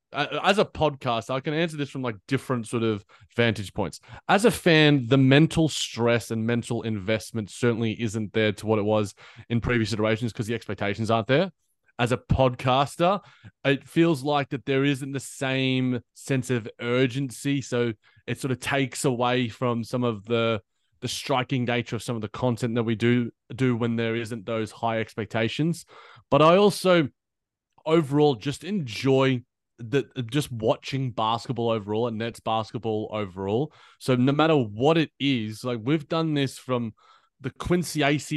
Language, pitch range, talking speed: English, 110-135 Hz, 170 wpm